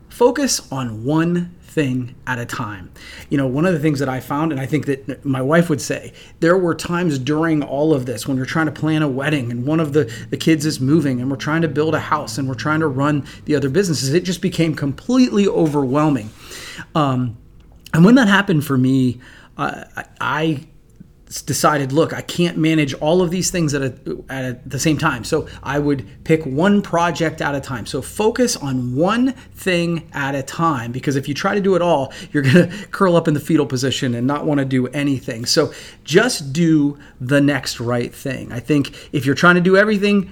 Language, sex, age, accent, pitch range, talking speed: English, male, 30-49, American, 135-165 Hz, 215 wpm